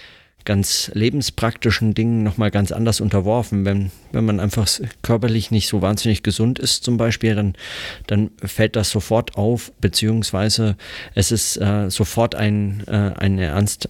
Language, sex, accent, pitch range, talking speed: German, male, German, 95-110 Hz, 145 wpm